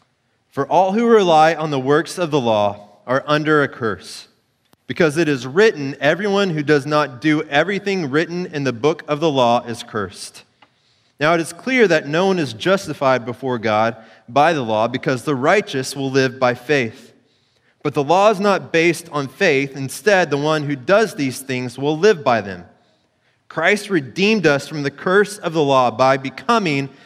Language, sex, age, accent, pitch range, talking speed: English, male, 30-49, American, 125-170 Hz, 185 wpm